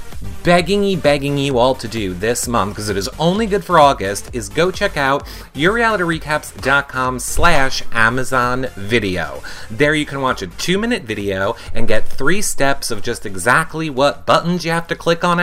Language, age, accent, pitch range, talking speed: English, 30-49, American, 110-160 Hz, 170 wpm